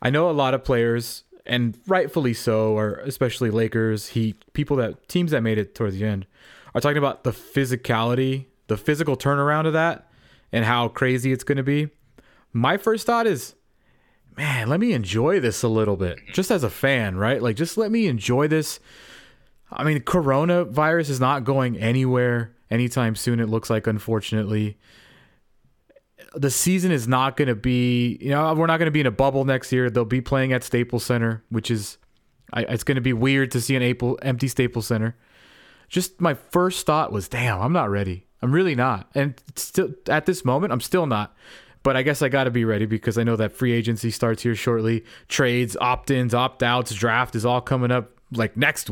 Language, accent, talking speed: English, American, 200 wpm